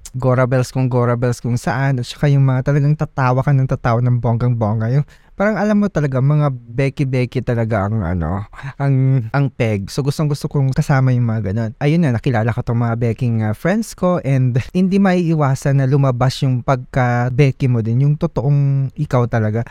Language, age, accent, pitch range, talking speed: Filipino, 20-39, native, 120-150 Hz, 185 wpm